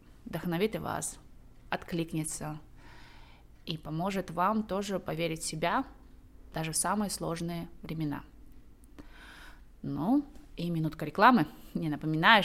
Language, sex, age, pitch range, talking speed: Russian, female, 20-39, 155-200 Hz, 105 wpm